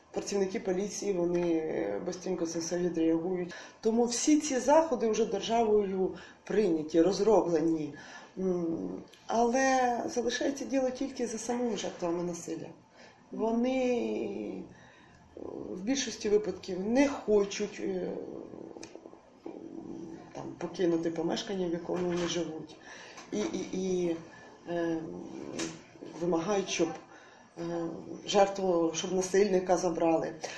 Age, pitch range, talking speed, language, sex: 20-39, 175-240 Hz, 90 wpm, Russian, female